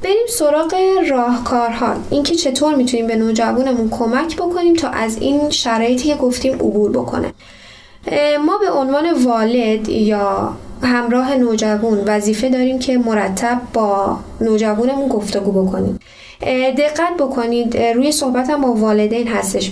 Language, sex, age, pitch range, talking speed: Persian, female, 10-29, 220-275 Hz, 125 wpm